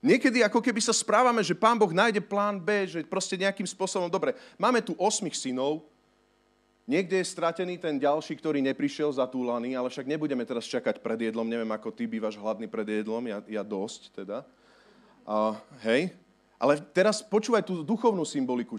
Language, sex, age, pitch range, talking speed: Slovak, male, 30-49, 135-205 Hz, 180 wpm